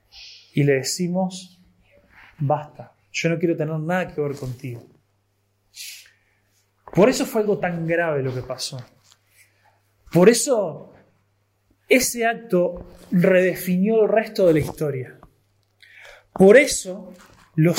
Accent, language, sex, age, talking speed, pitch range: Argentinian, Spanish, male, 20-39, 115 wpm, 140-210 Hz